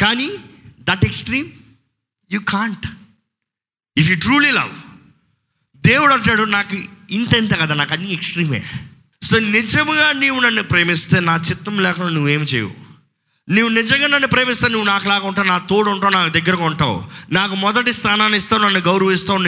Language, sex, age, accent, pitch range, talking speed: Telugu, male, 20-39, native, 145-210 Hz, 140 wpm